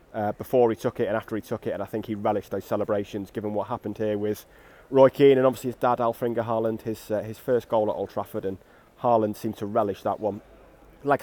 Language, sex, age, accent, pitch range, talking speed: English, male, 30-49, British, 105-125 Hz, 245 wpm